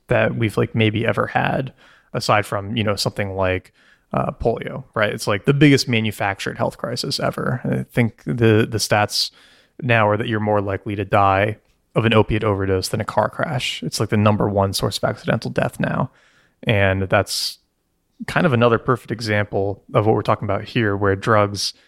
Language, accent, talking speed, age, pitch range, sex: English, American, 190 wpm, 20-39, 100-115 Hz, male